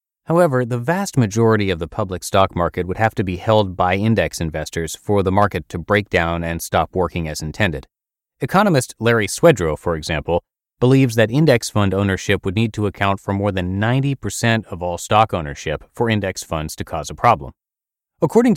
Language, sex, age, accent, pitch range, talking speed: English, male, 30-49, American, 85-120 Hz, 185 wpm